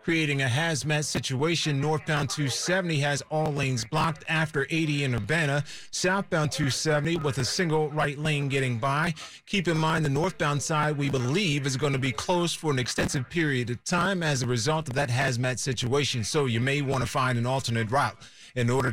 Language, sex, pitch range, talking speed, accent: English, male, 135-160 Hz, 190 wpm, American